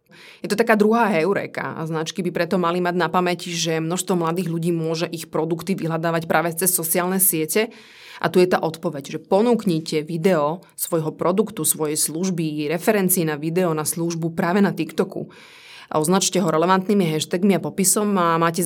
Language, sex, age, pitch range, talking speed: Slovak, female, 30-49, 165-190 Hz, 175 wpm